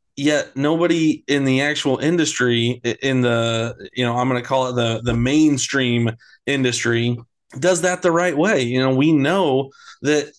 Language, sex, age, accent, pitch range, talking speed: English, male, 30-49, American, 120-135 Hz, 170 wpm